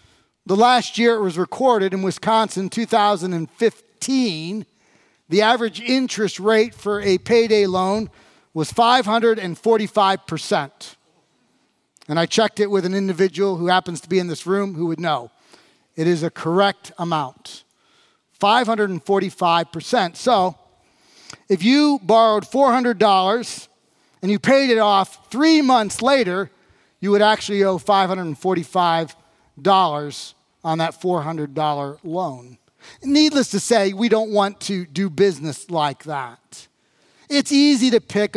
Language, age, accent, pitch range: English, 40-59, American, 170-215 Hz